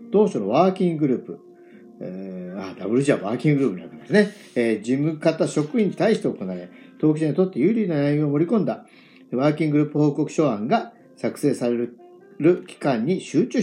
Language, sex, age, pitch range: Japanese, male, 50-69, 135-195 Hz